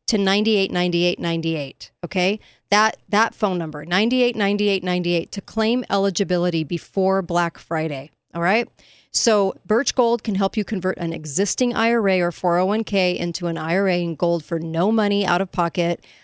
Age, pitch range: 40-59, 175-215 Hz